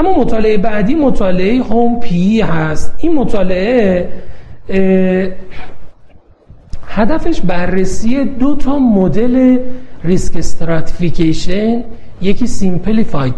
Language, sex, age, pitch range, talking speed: Persian, male, 40-59, 165-230 Hz, 75 wpm